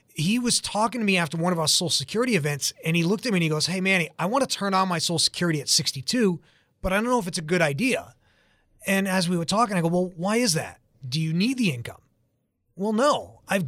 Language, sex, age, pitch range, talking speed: English, male, 30-49, 165-210 Hz, 265 wpm